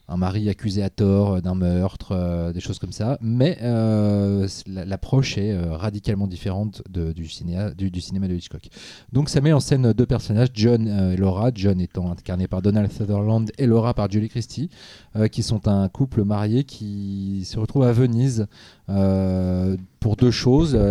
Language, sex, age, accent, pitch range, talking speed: French, male, 30-49, French, 95-115 Hz, 170 wpm